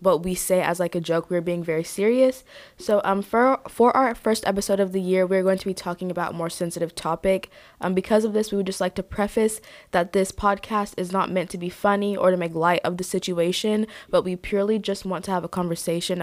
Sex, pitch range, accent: female, 175-205 Hz, American